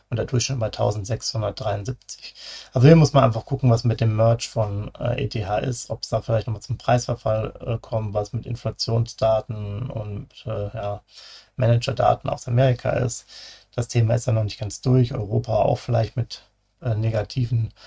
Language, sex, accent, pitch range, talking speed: German, male, German, 110-125 Hz, 175 wpm